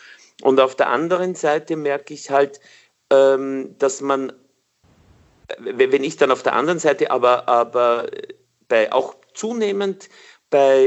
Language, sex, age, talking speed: German, male, 50-69, 125 wpm